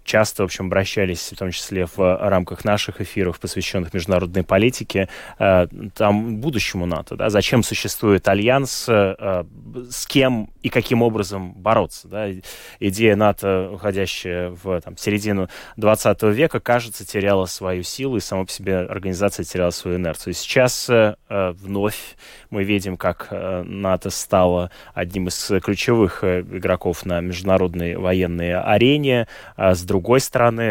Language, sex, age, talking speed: Russian, male, 20-39, 130 wpm